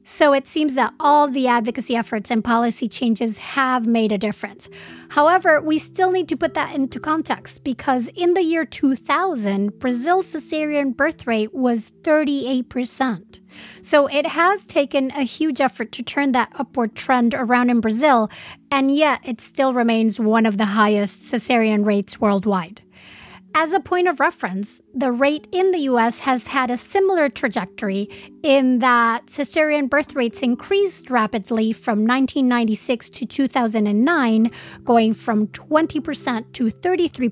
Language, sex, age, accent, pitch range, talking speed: English, female, 40-59, American, 230-300 Hz, 150 wpm